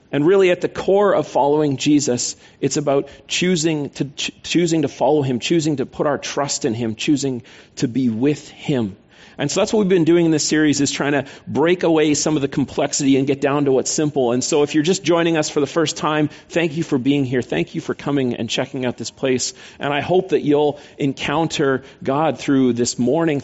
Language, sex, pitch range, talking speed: English, male, 135-165 Hz, 225 wpm